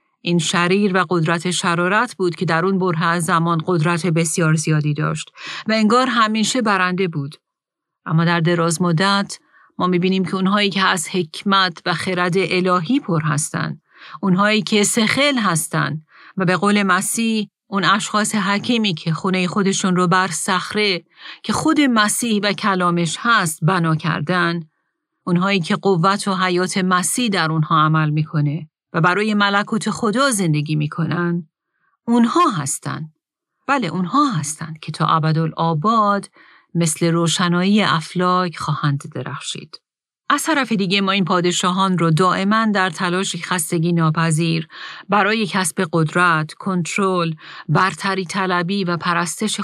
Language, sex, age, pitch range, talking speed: Persian, female, 40-59, 170-200 Hz, 135 wpm